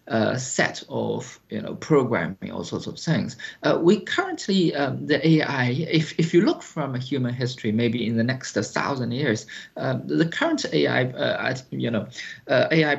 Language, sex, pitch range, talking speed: English, male, 120-160 Hz, 175 wpm